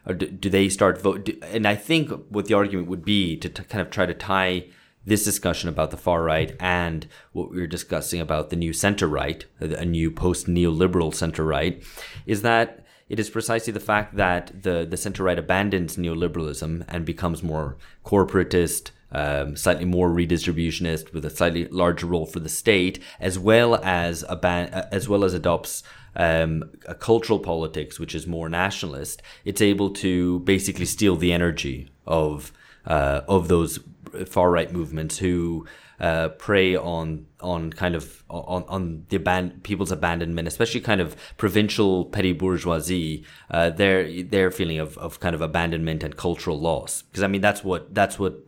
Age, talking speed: 30-49, 175 wpm